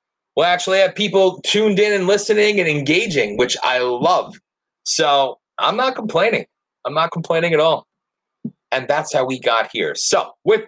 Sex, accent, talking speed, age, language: male, American, 175 wpm, 30-49, English